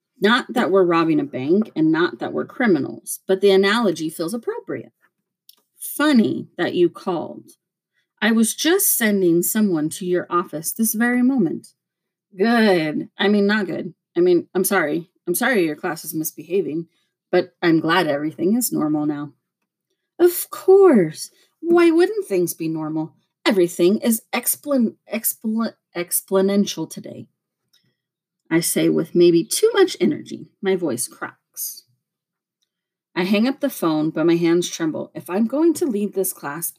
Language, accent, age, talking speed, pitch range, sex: English, American, 30-49, 145 wpm, 175-250 Hz, female